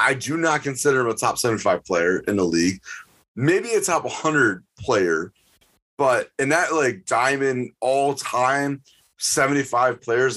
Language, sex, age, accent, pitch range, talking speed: English, male, 30-49, American, 115-150 Hz, 145 wpm